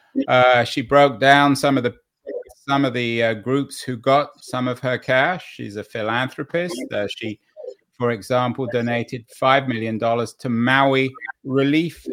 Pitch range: 130-155 Hz